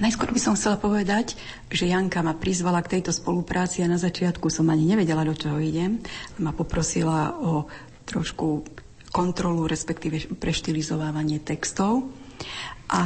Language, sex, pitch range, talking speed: Slovak, female, 145-185 Hz, 140 wpm